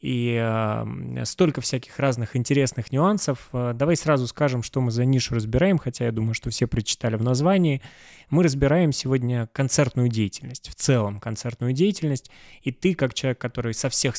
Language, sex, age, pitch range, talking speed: Russian, male, 20-39, 120-140 Hz, 160 wpm